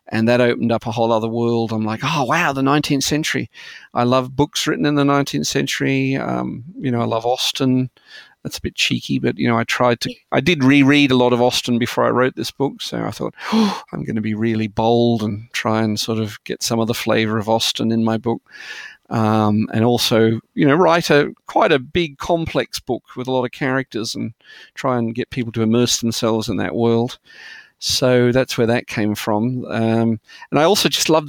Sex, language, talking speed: male, English, 225 wpm